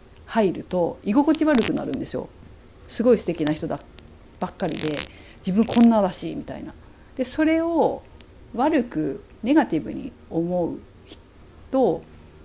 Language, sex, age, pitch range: Japanese, female, 50-69, 170-260 Hz